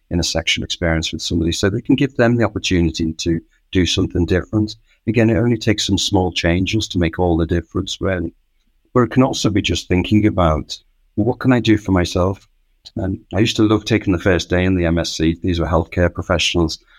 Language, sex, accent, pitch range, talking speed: English, male, British, 85-105 Hz, 220 wpm